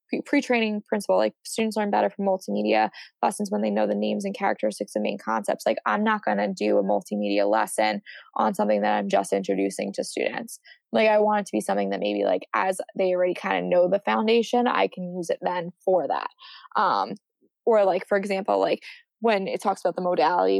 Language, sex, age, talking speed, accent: English, female, 20-39, 215 wpm, American